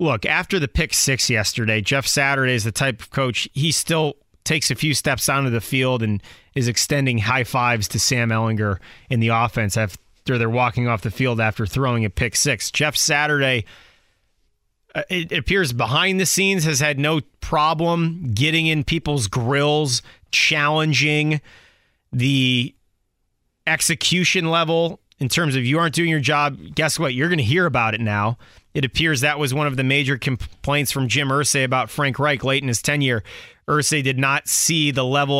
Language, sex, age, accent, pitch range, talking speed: English, male, 30-49, American, 125-150 Hz, 180 wpm